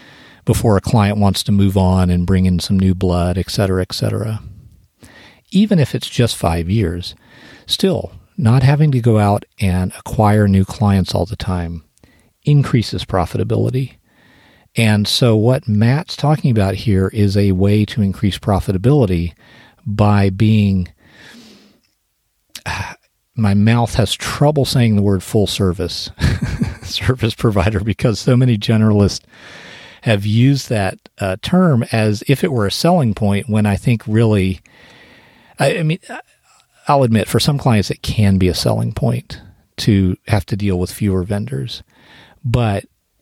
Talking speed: 145 wpm